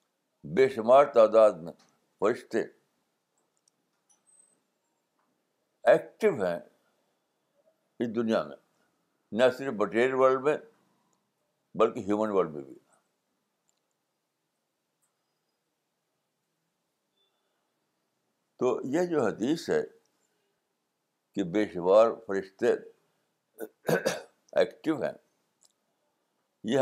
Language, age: Urdu, 60-79